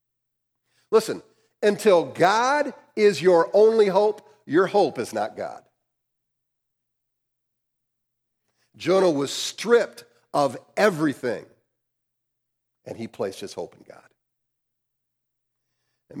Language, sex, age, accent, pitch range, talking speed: English, male, 50-69, American, 110-125 Hz, 95 wpm